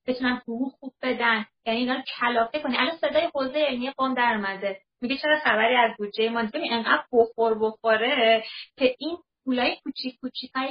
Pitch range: 220-275 Hz